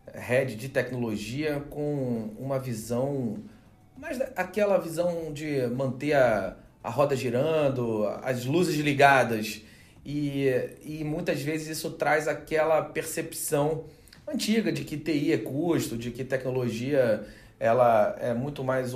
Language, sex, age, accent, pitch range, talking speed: Portuguese, male, 40-59, Brazilian, 125-150 Hz, 125 wpm